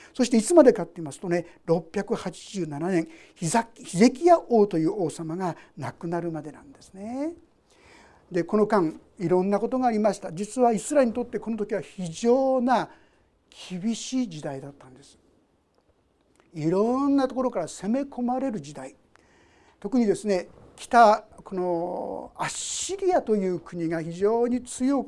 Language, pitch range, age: Japanese, 170-245 Hz, 60-79